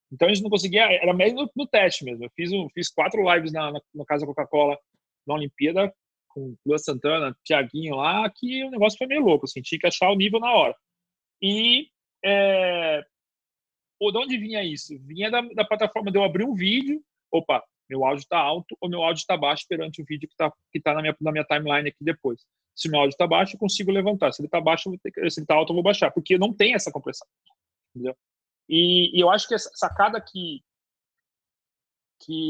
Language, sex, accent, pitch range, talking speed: Portuguese, male, Brazilian, 150-195 Hz, 215 wpm